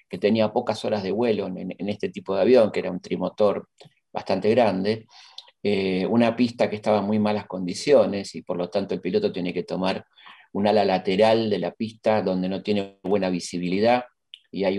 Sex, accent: male, Argentinian